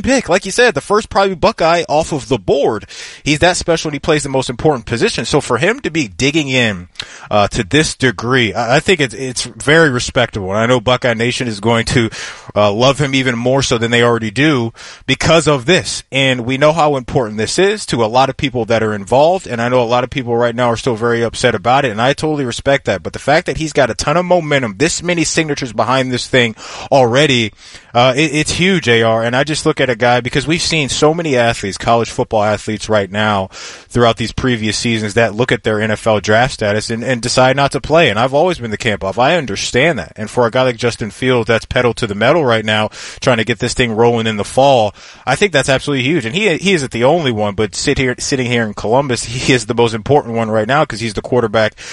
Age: 20-39